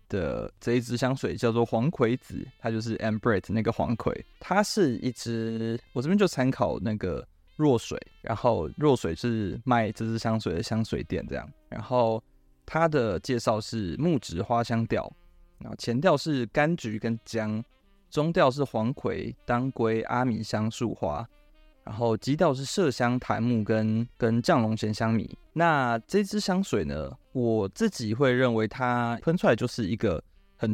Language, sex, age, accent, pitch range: Chinese, male, 20-39, native, 110-135 Hz